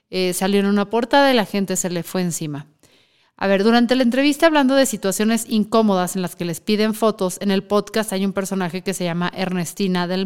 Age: 30-49